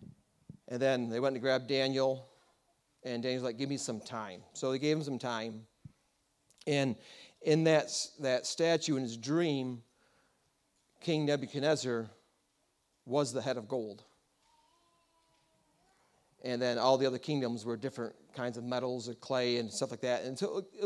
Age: 40-59